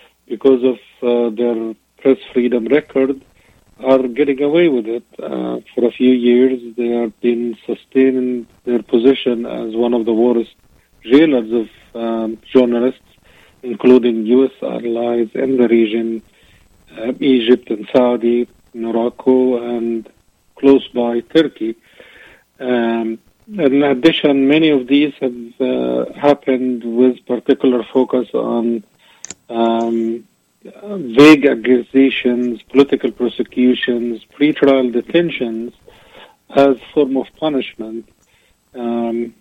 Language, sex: Arabic, male